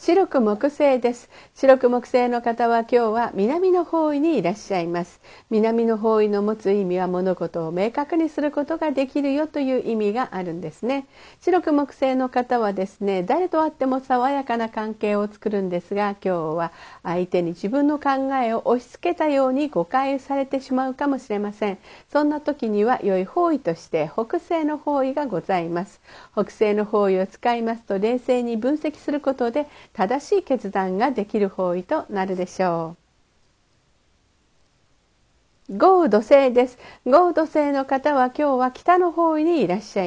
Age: 50-69